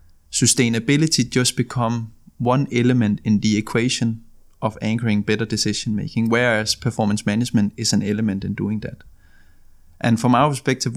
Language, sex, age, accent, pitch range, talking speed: Danish, male, 20-39, native, 105-125 Hz, 140 wpm